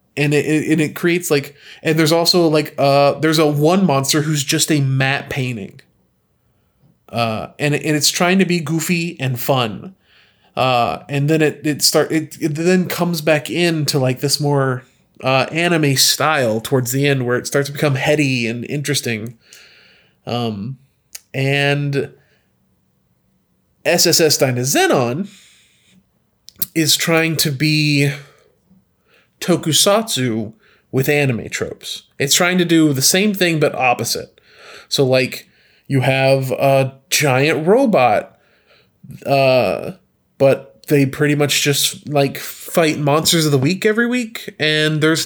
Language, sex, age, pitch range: English, male, 30-49, 135-170 Hz